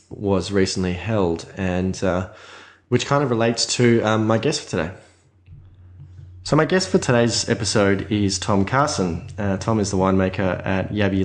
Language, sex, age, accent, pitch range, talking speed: English, male, 20-39, Australian, 90-100 Hz, 165 wpm